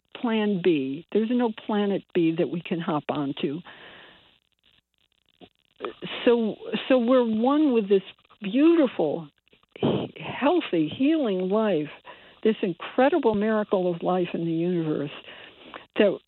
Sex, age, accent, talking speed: female, 60-79, American, 110 wpm